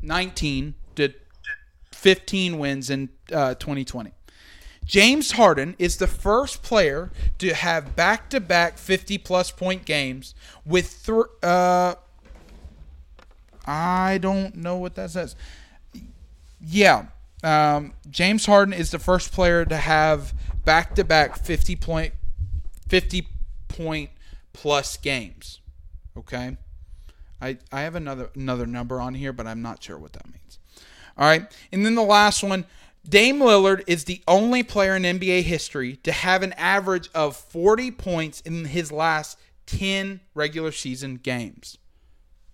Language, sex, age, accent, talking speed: English, male, 40-59, American, 135 wpm